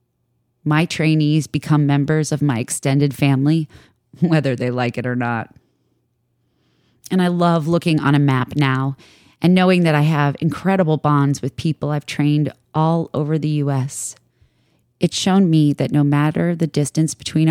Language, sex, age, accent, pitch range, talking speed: English, female, 30-49, American, 125-160 Hz, 160 wpm